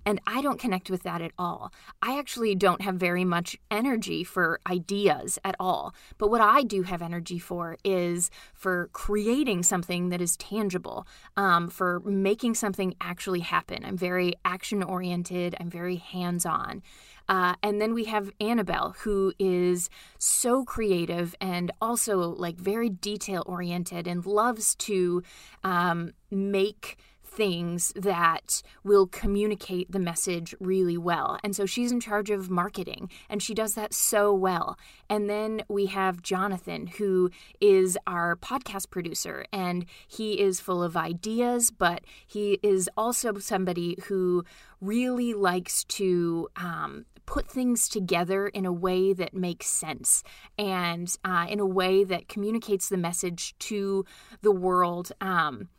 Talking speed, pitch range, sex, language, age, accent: 145 wpm, 180-210 Hz, female, English, 20-39, American